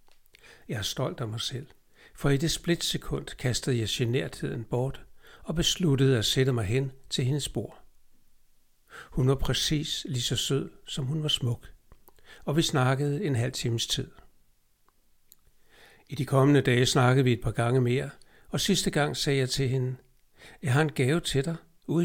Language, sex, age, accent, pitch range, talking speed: Danish, male, 60-79, native, 125-150 Hz, 175 wpm